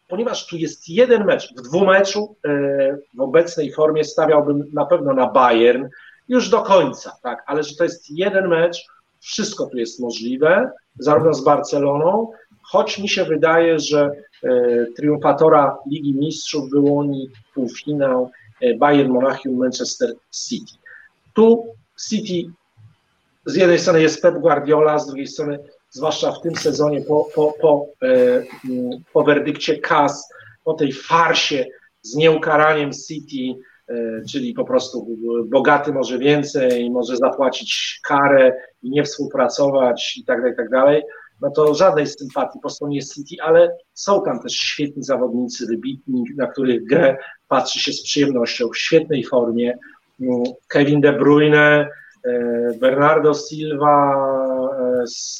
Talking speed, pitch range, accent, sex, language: 140 wpm, 130-165 Hz, native, male, Polish